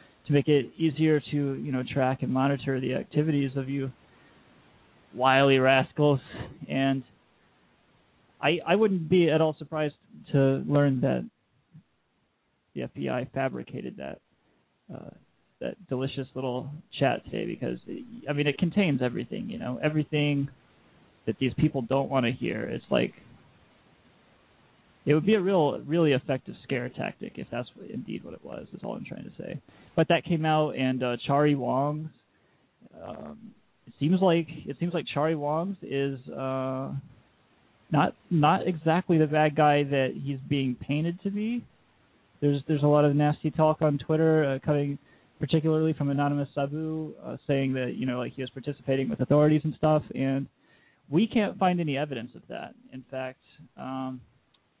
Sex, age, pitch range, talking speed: male, 20-39, 130-155 Hz, 160 wpm